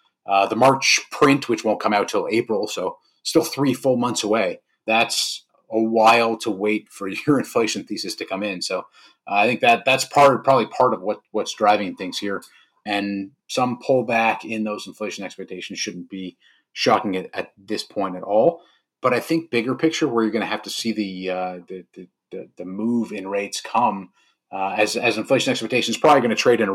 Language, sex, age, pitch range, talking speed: English, male, 30-49, 100-125 Hz, 205 wpm